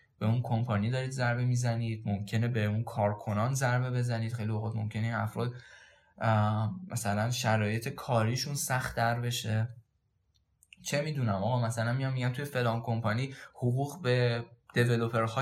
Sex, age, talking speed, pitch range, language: male, 10-29, 130 wpm, 110-130 Hz, Persian